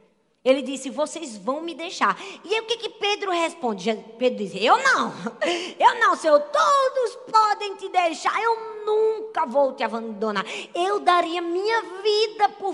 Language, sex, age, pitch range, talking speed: Portuguese, female, 20-39, 215-330 Hz, 160 wpm